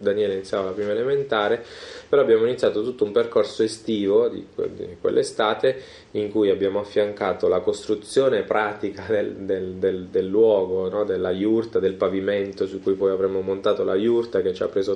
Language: Italian